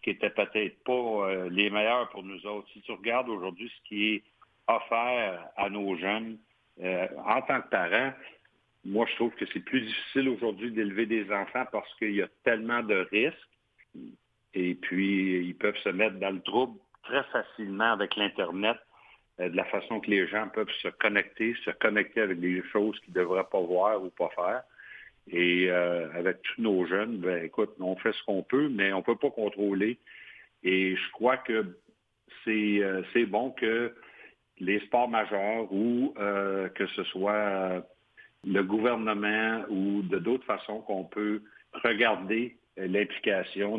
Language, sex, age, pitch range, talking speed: French, male, 60-79, 95-110 Hz, 170 wpm